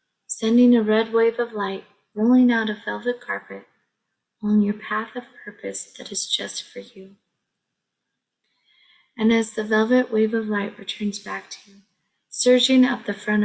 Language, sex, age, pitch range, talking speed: English, female, 20-39, 205-230 Hz, 160 wpm